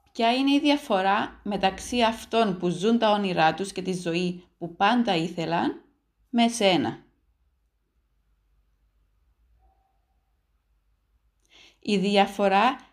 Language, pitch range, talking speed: Greek, 175-240 Hz, 95 wpm